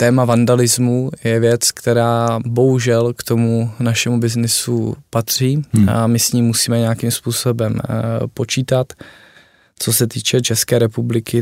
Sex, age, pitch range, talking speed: male, 20-39, 115-125 Hz, 125 wpm